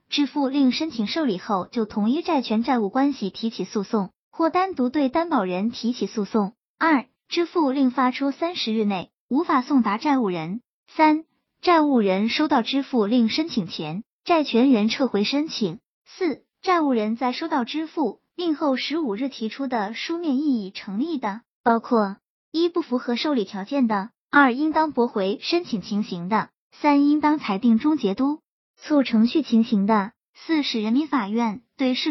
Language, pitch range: Chinese, 220-300 Hz